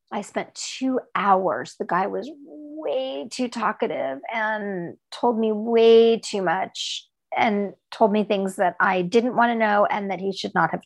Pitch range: 195-245 Hz